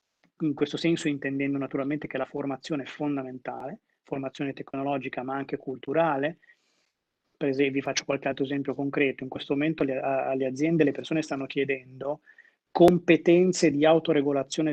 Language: Italian